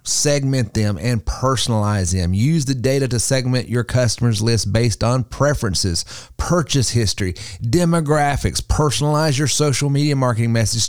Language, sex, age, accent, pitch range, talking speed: English, male, 30-49, American, 110-140 Hz, 140 wpm